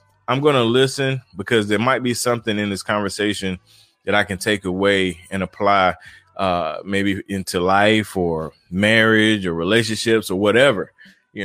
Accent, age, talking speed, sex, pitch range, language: American, 20-39, 150 wpm, male, 95-110 Hz, English